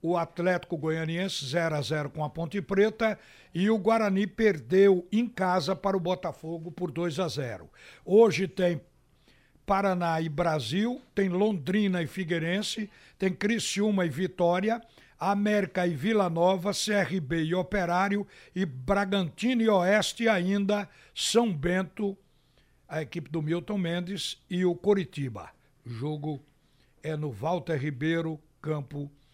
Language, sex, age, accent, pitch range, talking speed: Portuguese, male, 60-79, Brazilian, 155-200 Hz, 135 wpm